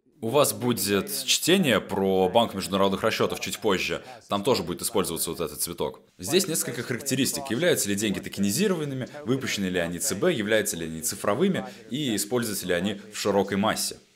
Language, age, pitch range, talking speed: Russian, 20-39, 95-120 Hz, 165 wpm